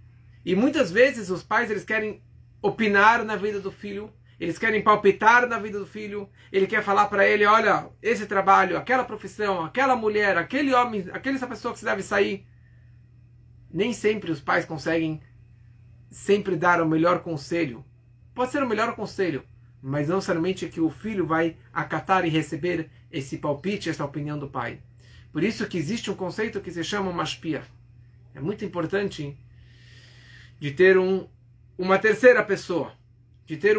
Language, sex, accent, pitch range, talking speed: Portuguese, male, Brazilian, 135-205 Hz, 165 wpm